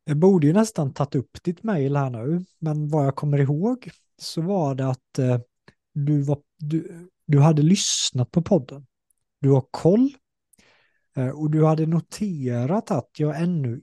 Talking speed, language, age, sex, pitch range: 160 wpm, Swedish, 30-49, male, 135-175 Hz